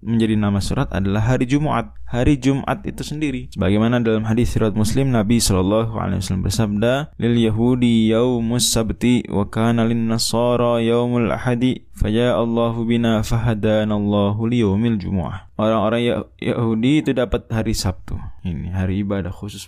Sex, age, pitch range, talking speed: male, 20-39, 105-125 Hz, 115 wpm